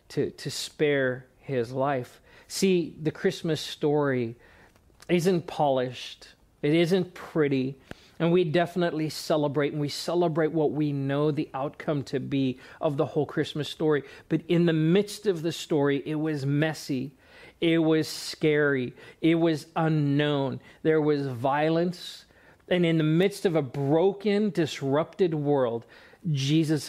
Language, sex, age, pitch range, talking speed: English, male, 40-59, 135-165 Hz, 140 wpm